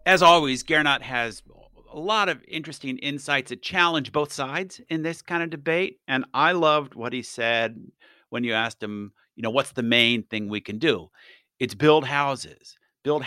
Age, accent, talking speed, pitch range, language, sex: 50-69, American, 185 wpm, 115-160 Hz, English, male